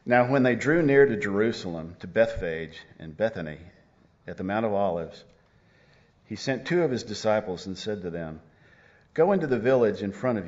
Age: 50-69